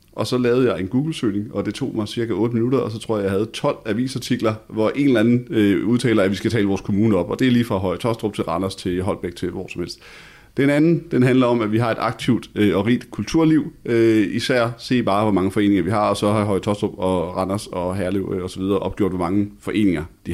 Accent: native